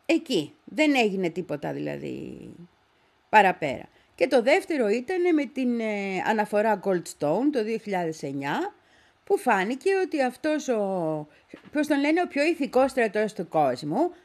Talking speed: 120 wpm